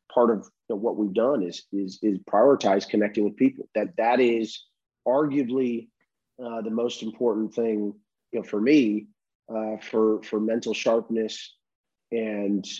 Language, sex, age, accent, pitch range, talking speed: English, male, 30-49, American, 100-115 Hz, 135 wpm